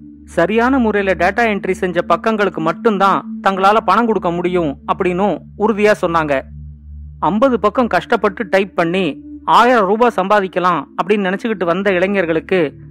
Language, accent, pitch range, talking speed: Tamil, native, 170-220 Hz, 90 wpm